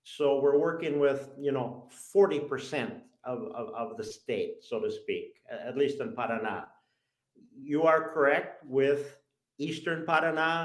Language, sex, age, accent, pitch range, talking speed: English, male, 50-69, American, 135-195 Hz, 140 wpm